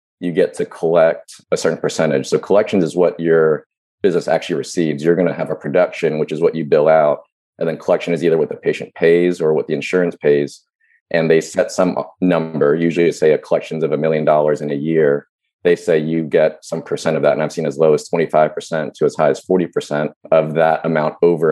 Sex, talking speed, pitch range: male, 225 wpm, 75-85 Hz